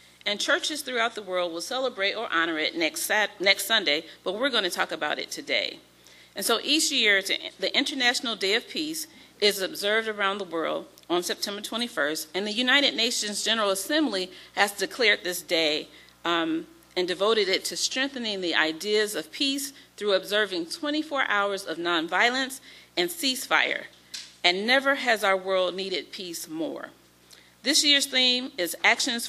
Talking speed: 160 wpm